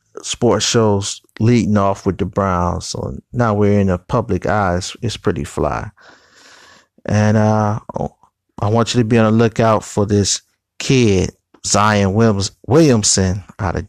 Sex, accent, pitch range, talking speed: male, American, 100-115 Hz, 150 wpm